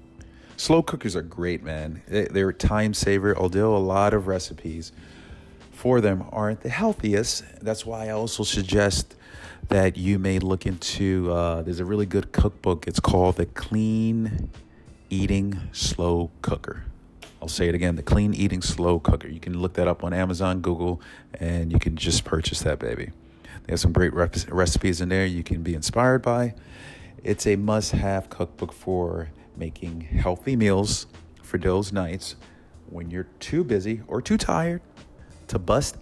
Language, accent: English, American